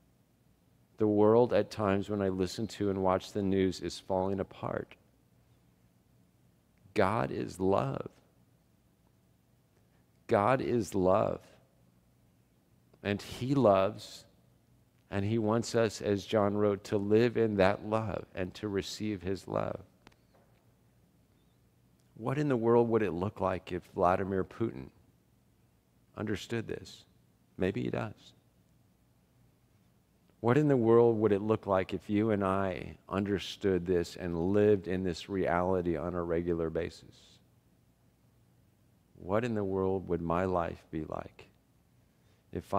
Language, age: English, 50-69